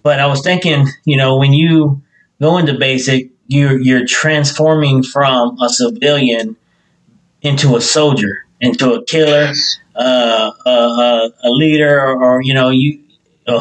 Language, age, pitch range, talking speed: English, 20-39, 125-155 Hz, 145 wpm